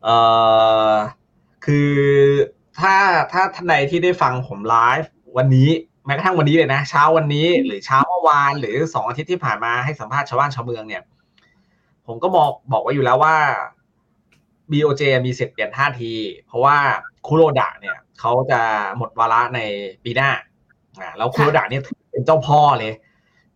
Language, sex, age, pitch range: Thai, male, 20-39, 125-160 Hz